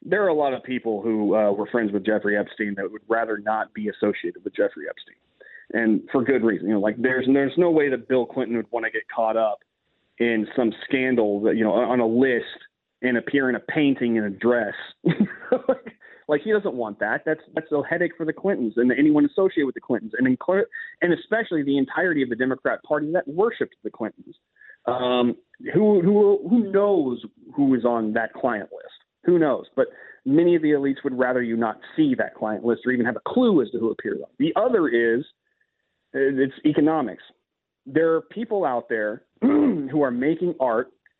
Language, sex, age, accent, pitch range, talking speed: English, male, 30-49, American, 120-195 Hz, 205 wpm